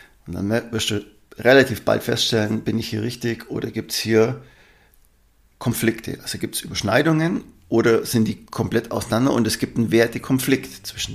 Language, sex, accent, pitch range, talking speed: German, male, German, 100-125 Hz, 165 wpm